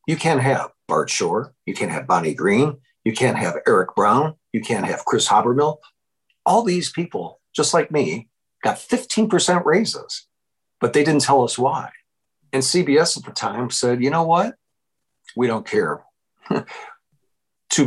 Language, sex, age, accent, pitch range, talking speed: English, male, 50-69, American, 125-180 Hz, 160 wpm